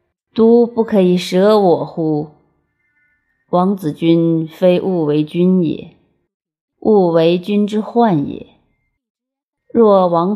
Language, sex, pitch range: Chinese, female, 155-200 Hz